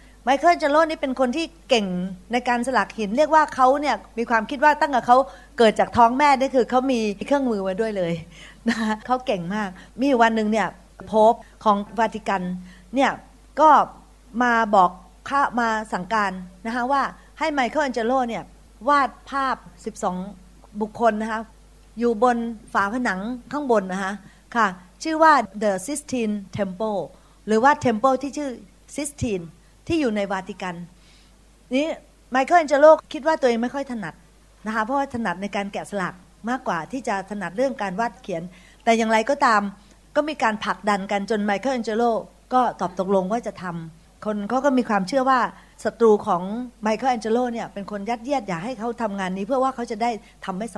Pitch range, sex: 200-260 Hz, female